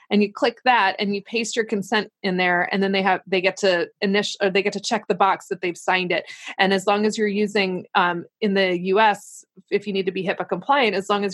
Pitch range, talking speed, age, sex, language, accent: 185-210 Hz, 265 wpm, 20-39, female, English, American